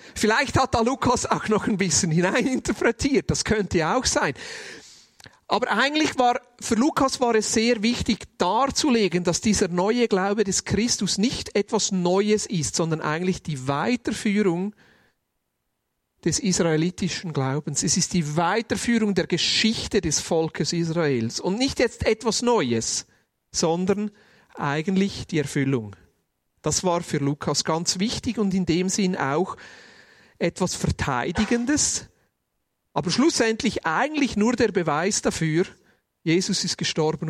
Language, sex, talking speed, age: German, male, 130 wpm, 40-59